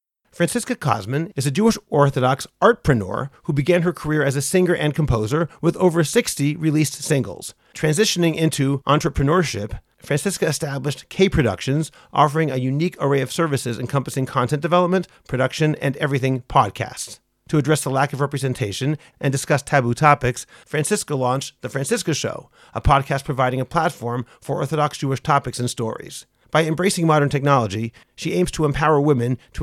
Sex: male